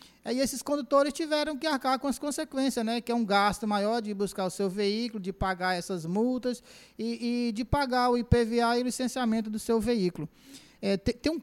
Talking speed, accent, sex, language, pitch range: 215 wpm, Brazilian, male, Portuguese, 175-230 Hz